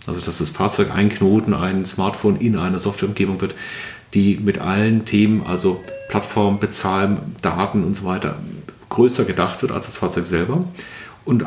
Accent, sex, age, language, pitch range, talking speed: German, male, 40-59, German, 95-115 Hz, 160 wpm